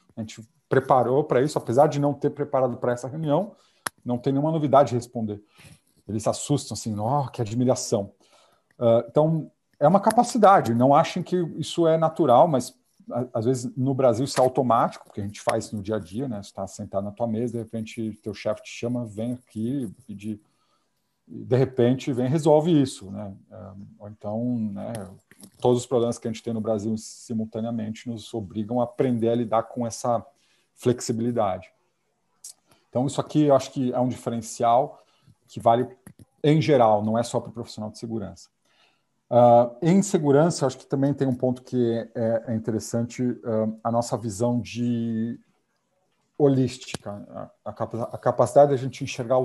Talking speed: 175 wpm